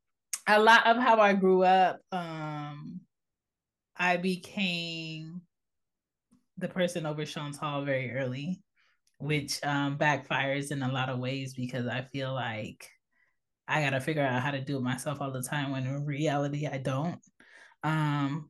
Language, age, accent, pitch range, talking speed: English, 20-39, American, 140-180 Hz, 155 wpm